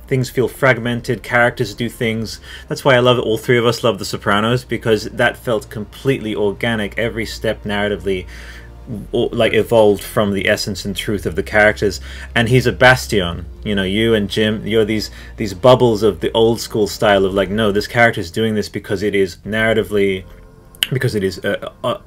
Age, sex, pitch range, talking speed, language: 30-49, male, 100-115 Hz, 190 wpm, English